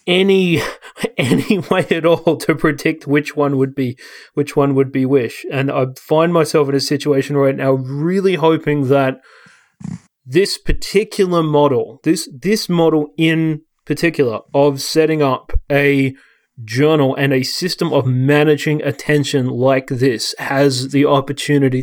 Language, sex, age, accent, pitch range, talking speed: English, male, 30-49, Australian, 135-155 Hz, 145 wpm